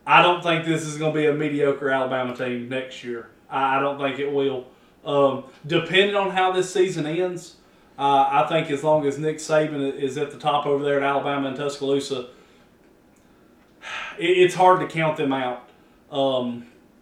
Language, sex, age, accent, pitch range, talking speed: English, male, 30-49, American, 135-160 Hz, 180 wpm